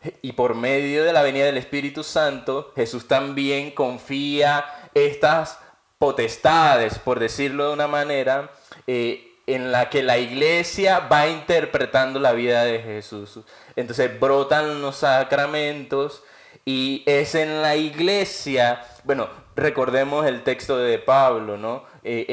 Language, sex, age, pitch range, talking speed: Spanish, male, 20-39, 120-150 Hz, 130 wpm